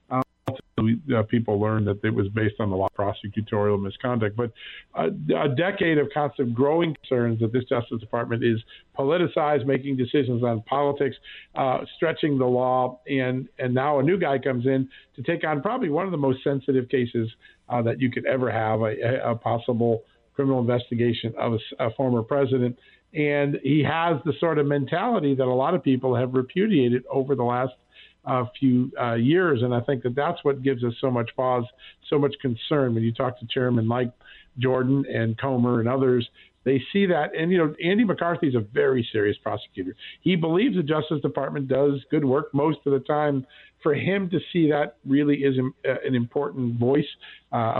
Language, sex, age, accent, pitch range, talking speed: English, male, 50-69, American, 120-145 Hz, 190 wpm